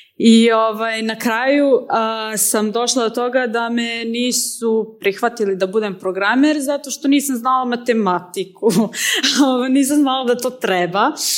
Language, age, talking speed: Croatian, 20-39, 135 wpm